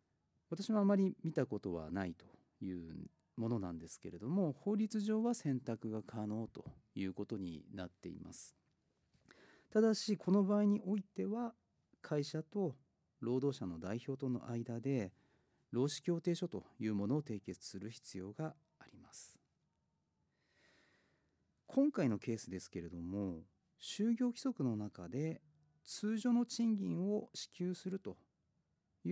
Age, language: 40-59, Japanese